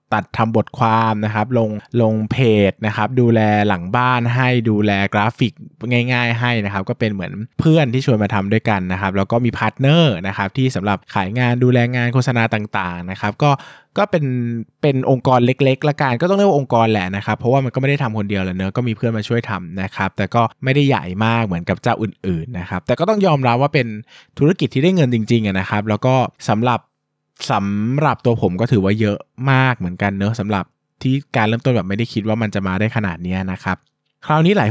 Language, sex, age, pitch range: Thai, male, 20-39, 100-125 Hz